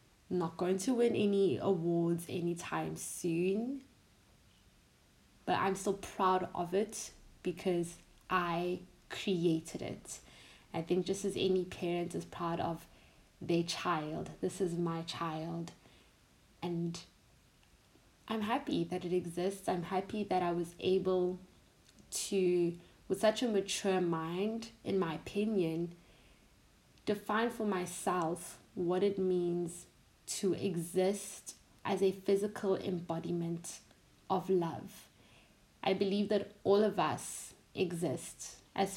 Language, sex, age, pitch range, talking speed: English, female, 20-39, 170-190 Hz, 115 wpm